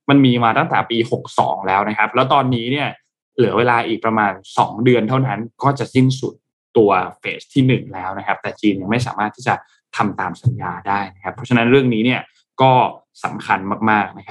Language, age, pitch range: Thai, 20-39, 115-145 Hz